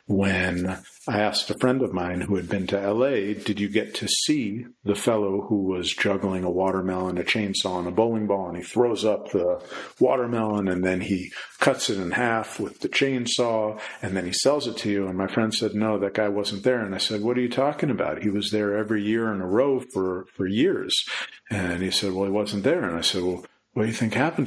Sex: male